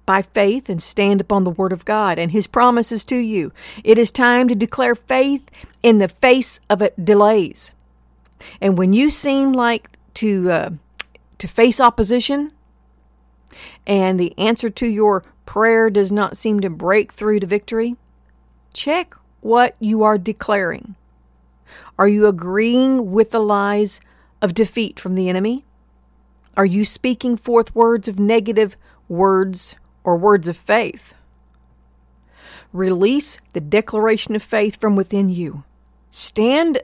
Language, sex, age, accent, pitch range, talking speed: English, female, 50-69, American, 185-235 Hz, 140 wpm